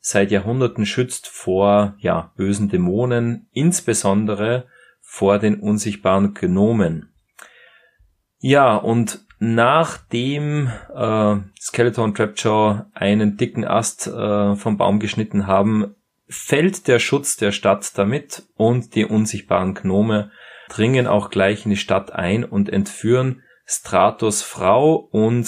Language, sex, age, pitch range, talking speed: German, male, 30-49, 100-125 Hz, 115 wpm